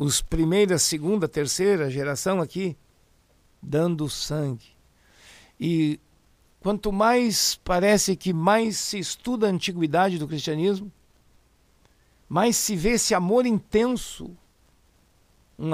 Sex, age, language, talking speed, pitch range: male, 60-79, Portuguese, 105 wpm, 155-205 Hz